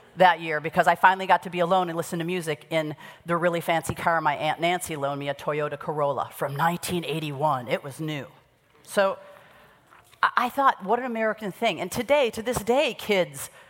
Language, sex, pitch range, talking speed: English, female, 150-185 Hz, 195 wpm